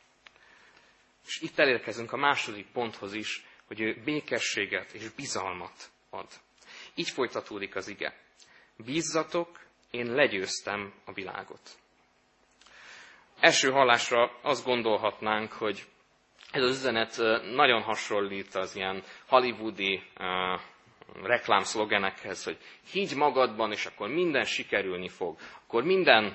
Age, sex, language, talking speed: 20-39, male, Hungarian, 100 wpm